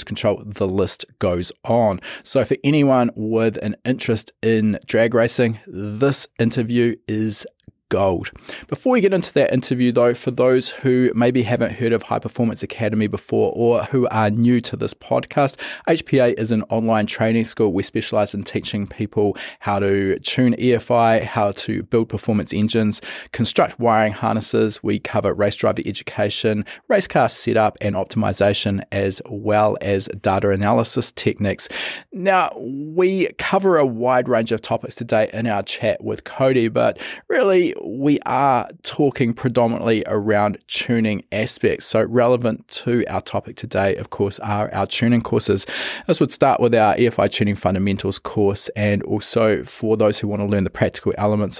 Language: English